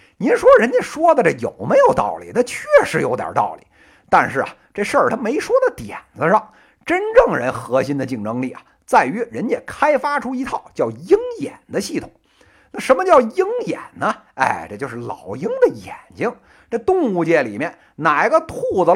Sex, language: male, Chinese